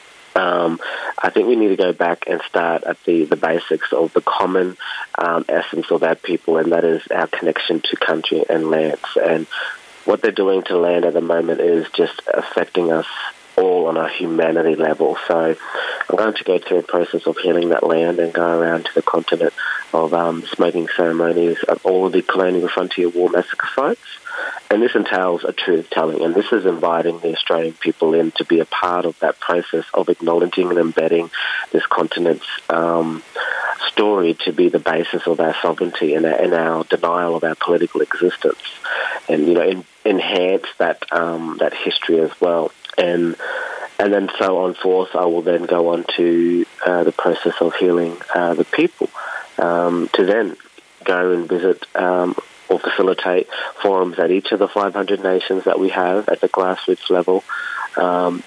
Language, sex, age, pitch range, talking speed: English, male, 30-49, 85-90 Hz, 185 wpm